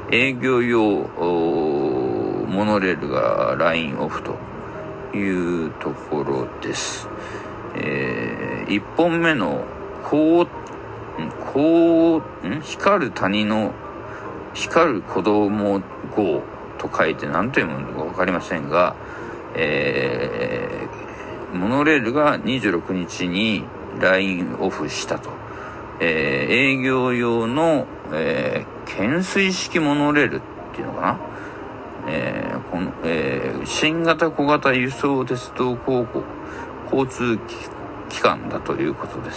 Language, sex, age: Japanese, male, 60-79